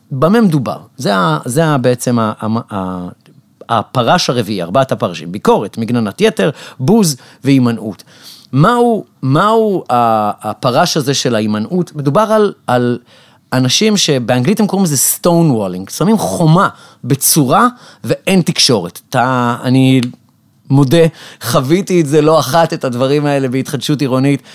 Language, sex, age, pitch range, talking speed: Hebrew, male, 30-49, 125-170 Hz, 125 wpm